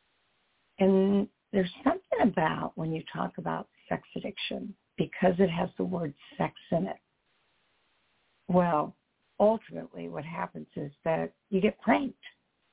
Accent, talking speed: American, 125 wpm